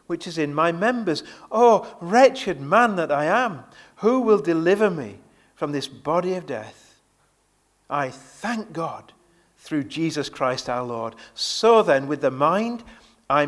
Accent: British